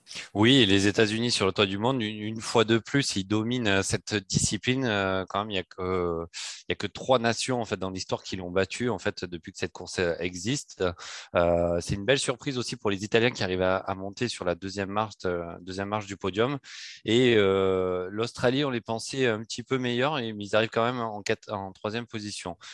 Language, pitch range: French, 95-120 Hz